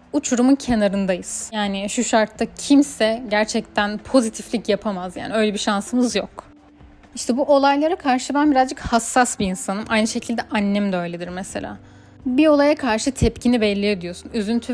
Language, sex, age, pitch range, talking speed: Turkish, female, 10-29, 205-245 Hz, 145 wpm